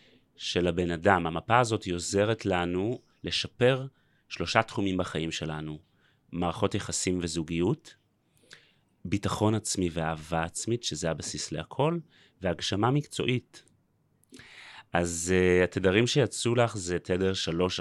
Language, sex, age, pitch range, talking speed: Hebrew, male, 30-49, 85-105 Hz, 110 wpm